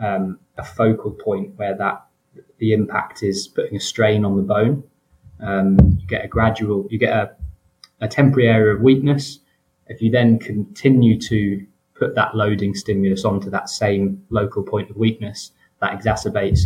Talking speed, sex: 165 wpm, male